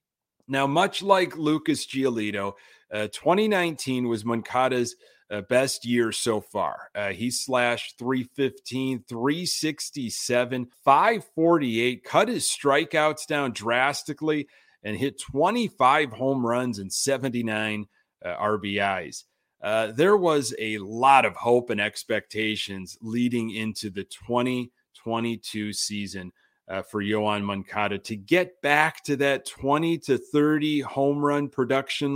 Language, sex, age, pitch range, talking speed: English, male, 30-49, 115-150 Hz, 120 wpm